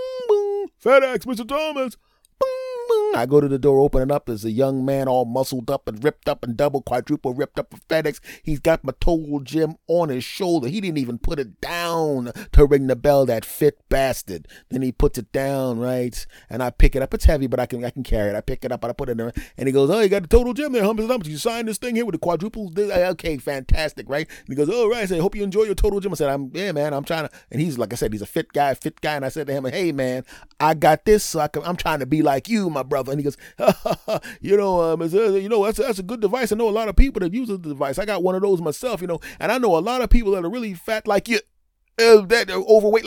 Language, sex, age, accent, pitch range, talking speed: English, male, 30-49, American, 130-205 Hz, 290 wpm